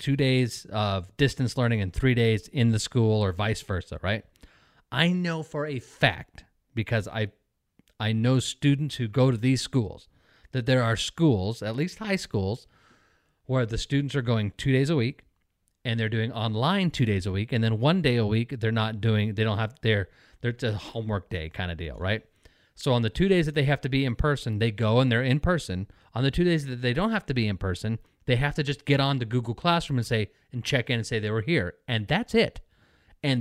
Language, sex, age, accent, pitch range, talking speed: English, male, 30-49, American, 110-145 Hz, 230 wpm